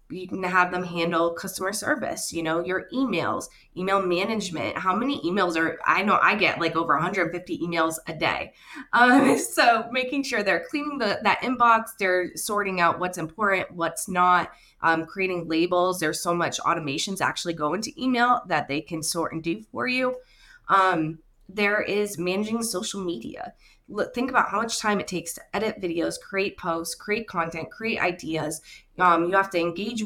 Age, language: 20-39, English